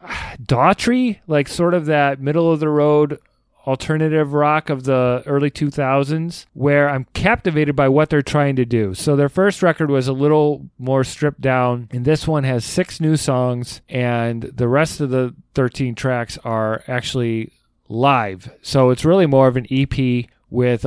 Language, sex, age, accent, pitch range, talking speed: English, male, 30-49, American, 120-145 Hz, 170 wpm